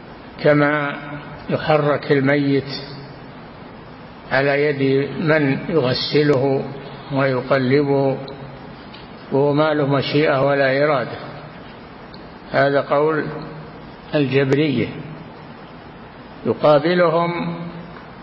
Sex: male